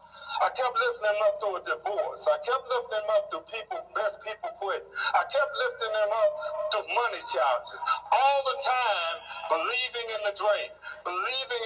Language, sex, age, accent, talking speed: English, male, 60-79, American, 175 wpm